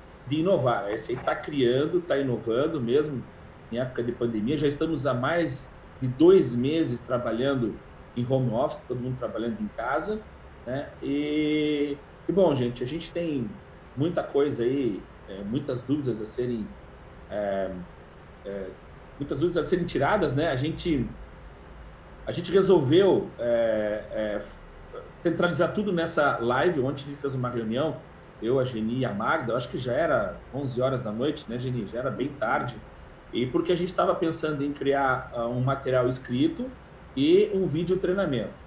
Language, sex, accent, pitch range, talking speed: Portuguese, male, Brazilian, 120-170 Hz, 160 wpm